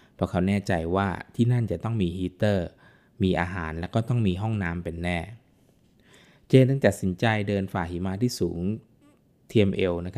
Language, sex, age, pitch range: Thai, male, 20-39, 90-110 Hz